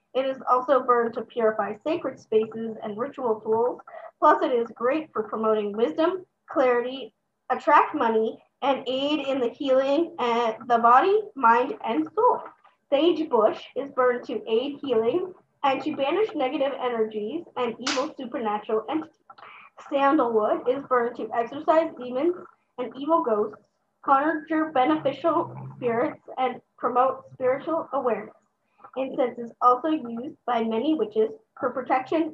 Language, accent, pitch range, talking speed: English, American, 235-315 Hz, 135 wpm